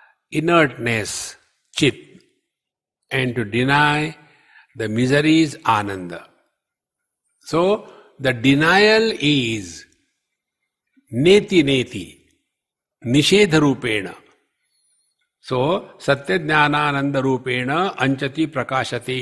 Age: 60-79